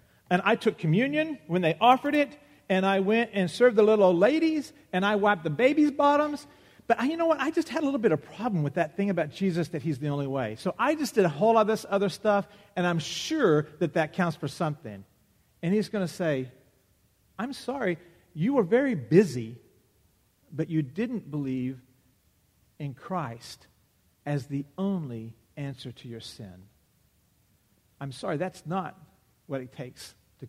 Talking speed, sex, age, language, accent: 190 wpm, male, 50-69, English, American